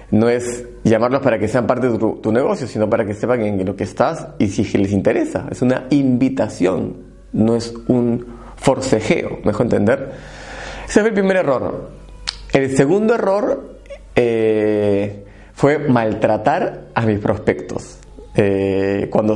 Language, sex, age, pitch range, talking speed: Spanish, male, 30-49, 105-135 Hz, 145 wpm